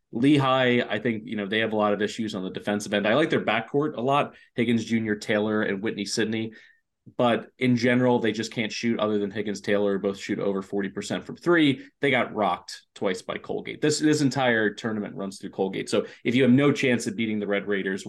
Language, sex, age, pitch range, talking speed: English, male, 20-39, 105-130 Hz, 230 wpm